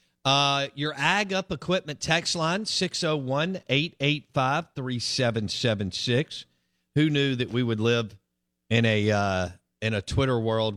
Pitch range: 90-140 Hz